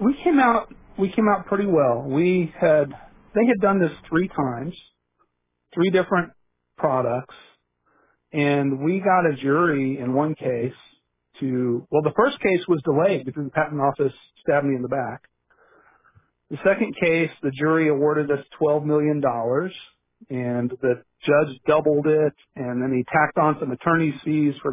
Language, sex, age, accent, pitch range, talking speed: English, male, 40-59, American, 130-170 Hz, 160 wpm